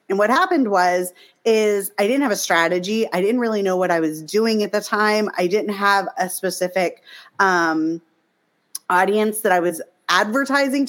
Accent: American